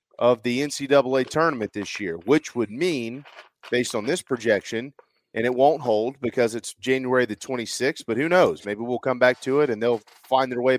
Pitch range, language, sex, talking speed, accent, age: 120-155 Hz, English, male, 200 wpm, American, 40-59